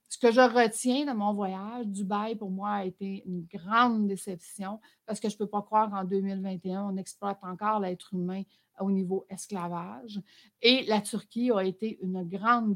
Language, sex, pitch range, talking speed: French, female, 185-215 Hz, 185 wpm